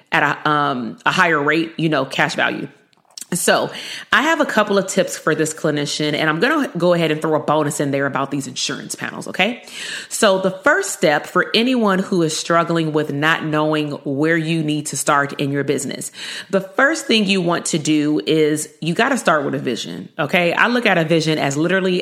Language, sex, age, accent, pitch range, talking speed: English, female, 30-49, American, 155-195 Hz, 220 wpm